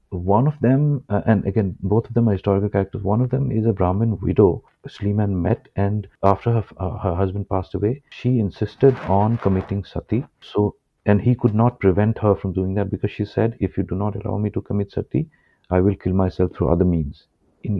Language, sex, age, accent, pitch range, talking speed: English, male, 50-69, Indian, 95-115 Hz, 210 wpm